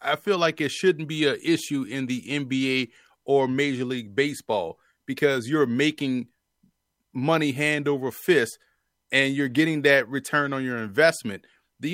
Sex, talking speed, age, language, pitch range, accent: male, 155 wpm, 30-49, English, 135-175 Hz, American